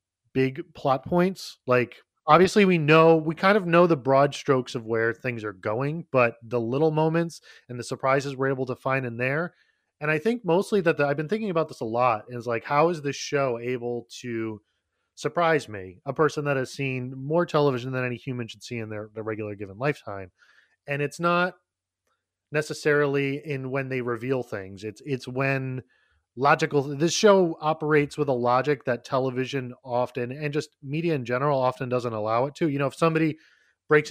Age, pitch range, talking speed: 20-39, 120-150 Hz, 190 wpm